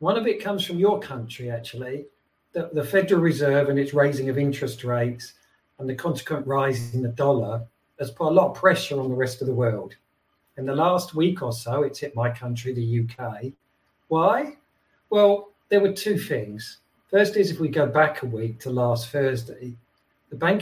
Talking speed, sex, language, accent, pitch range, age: 200 wpm, male, English, British, 120-155 Hz, 50-69